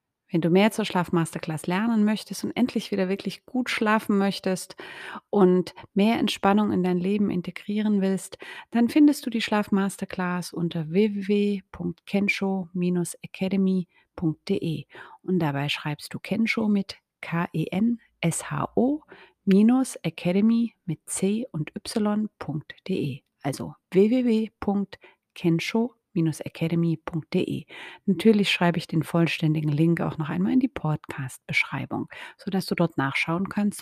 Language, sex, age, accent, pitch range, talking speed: German, female, 30-49, German, 170-215 Hz, 115 wpm